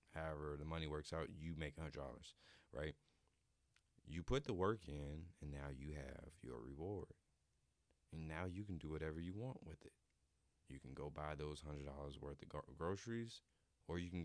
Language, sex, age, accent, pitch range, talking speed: English, male, 30-49, American, 70-85 Hz, 180 wpm